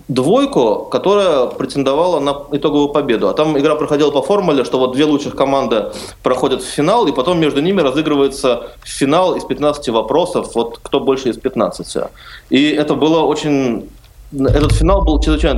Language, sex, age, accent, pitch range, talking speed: Russian, male, 20-39, native, 125-155 Hz, 160 wpm